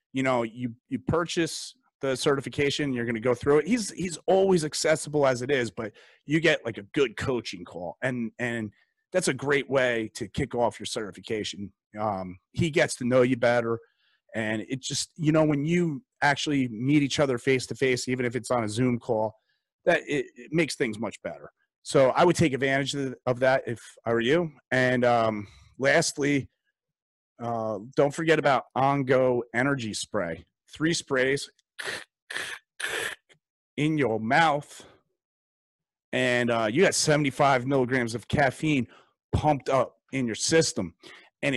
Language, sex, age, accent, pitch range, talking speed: English, male, 30-49, American, 115-145 Hz, 165 wpm